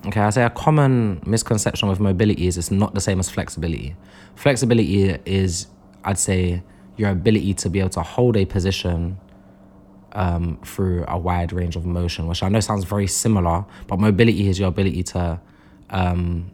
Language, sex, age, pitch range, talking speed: English, male, 20-39, 90-100 Hz, 175 wpm